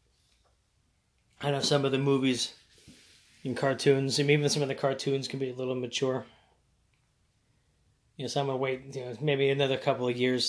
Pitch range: 120-135 Hz